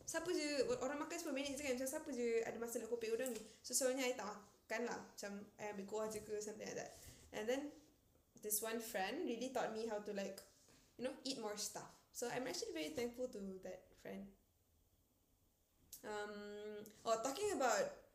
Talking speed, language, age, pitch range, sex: 200 wpm, Malay, 10-29, 195-250 Hz, female